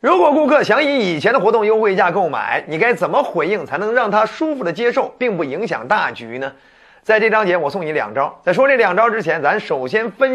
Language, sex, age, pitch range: Chinese, male, 30-49, 160-240 Hz